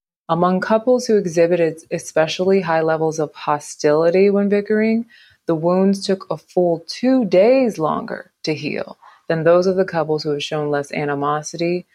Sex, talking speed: female, 155 wpm